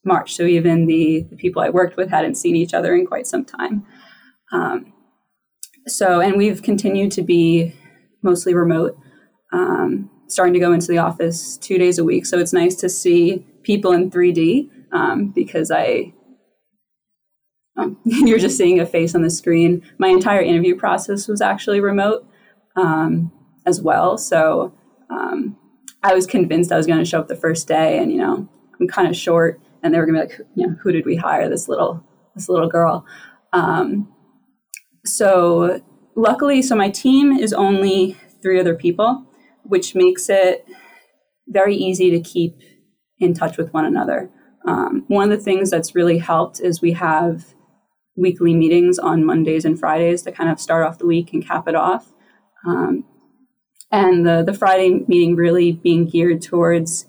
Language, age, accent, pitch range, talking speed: English, 20-39, American, 170-220 Hz, 175 wpm